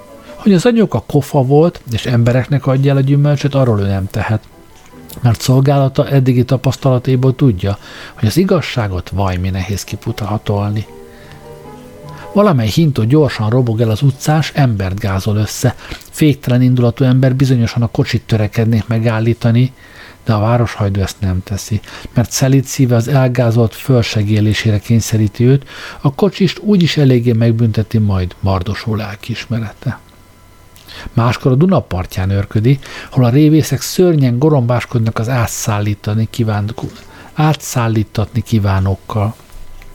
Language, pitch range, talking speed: Hungarian, 105-135 Hz, 120 wpm